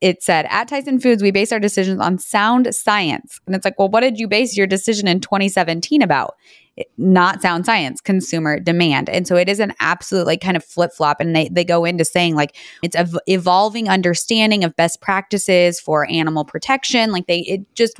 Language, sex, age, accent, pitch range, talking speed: English, female, 20-39, American, 160-195 Hz, 215 wpm